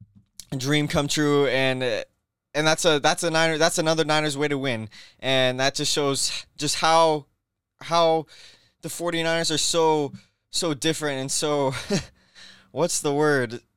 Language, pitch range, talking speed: English, 120-150 Hz, 155 wpm